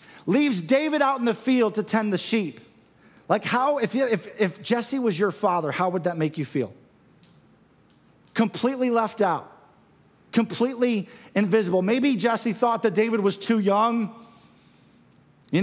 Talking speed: 155 wpm